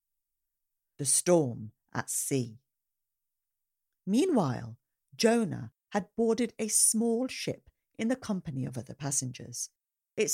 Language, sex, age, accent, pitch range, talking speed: English, female, 50-69, British, 140-230 Hz, 105 wpm